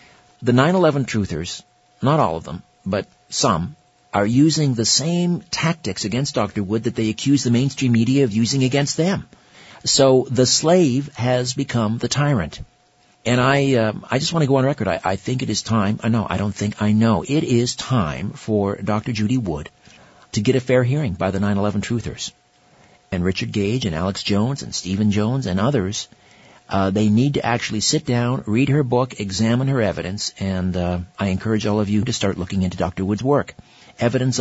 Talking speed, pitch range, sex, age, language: 195 wpm, 95-125 Hz, male, 50-69, English